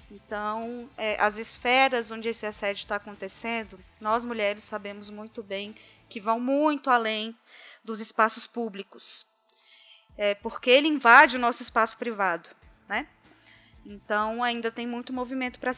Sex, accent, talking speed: female, Brazilian, 135 wpm